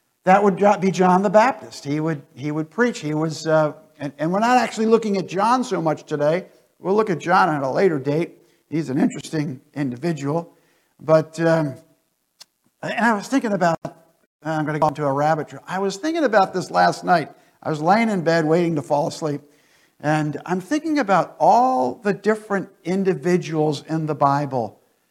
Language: English